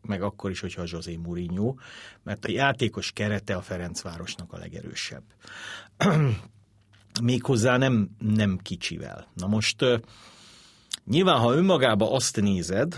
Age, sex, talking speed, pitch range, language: 50-69, male, 120 wpm, 95-115 Hz, Hungarian